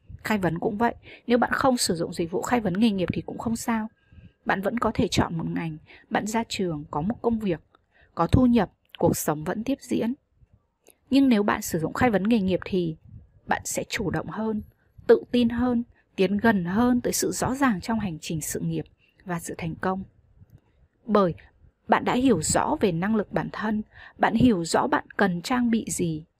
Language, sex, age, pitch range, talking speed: Vietnamese, female, 20-39, 160-235 Hz, 210 wpm